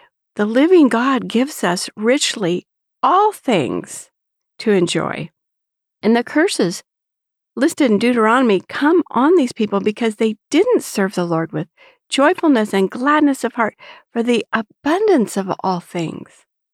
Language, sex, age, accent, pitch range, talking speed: English, female, 60-79, American, 205-330 Hz, 135 wpm